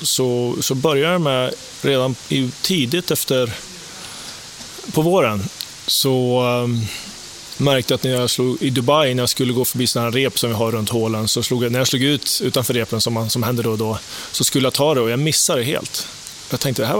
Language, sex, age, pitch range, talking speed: English, male, 20-39, 115-130 Hz, 215 wpm